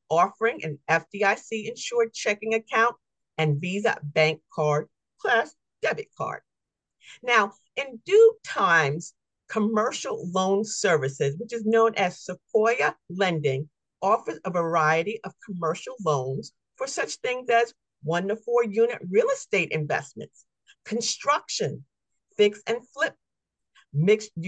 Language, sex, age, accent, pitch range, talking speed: English, female, 50-69, American, 160-235 Hz, 120 wpm